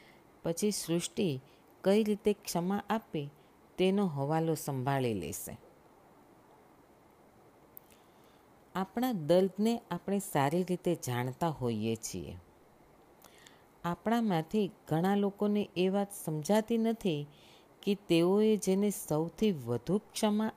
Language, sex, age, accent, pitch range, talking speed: Gujarati, female, 50-69, native, 145-205 Hz, 90 wpm